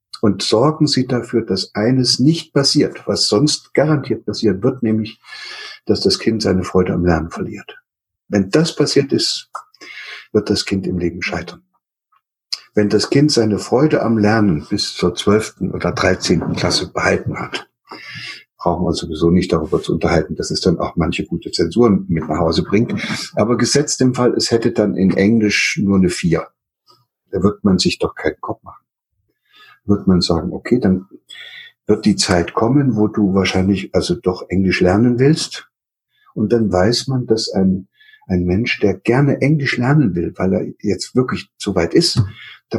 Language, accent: German, German